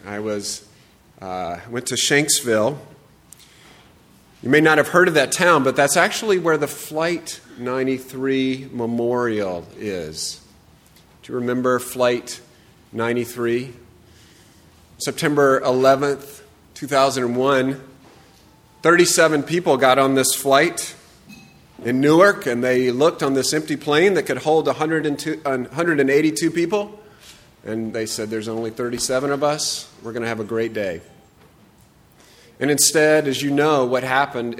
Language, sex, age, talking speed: English, male, 30-49, 125 wpm